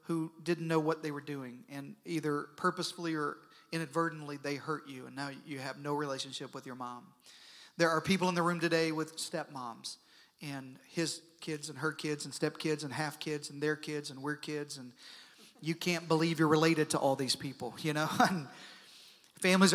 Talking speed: 190 wpm